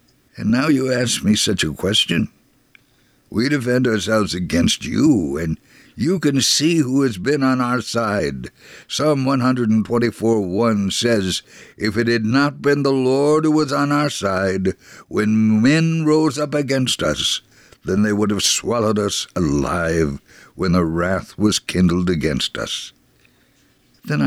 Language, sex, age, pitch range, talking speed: English, male, 60-79, 100-140 Hz, 150 wpm